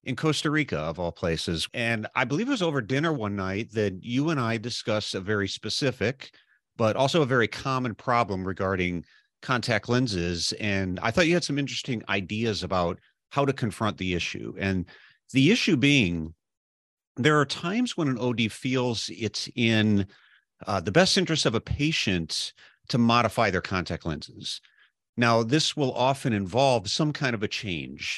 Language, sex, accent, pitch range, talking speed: English, male, American, 95-135 Hz, 175 wpm